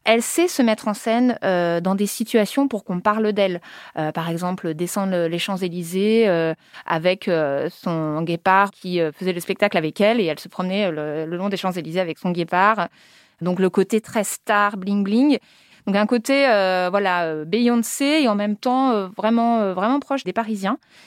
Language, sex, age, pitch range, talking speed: French, female, 20-39, 175-225 Hz, 190 wpm